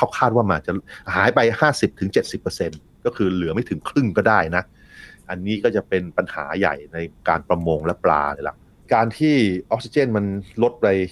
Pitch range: 85-105 Hz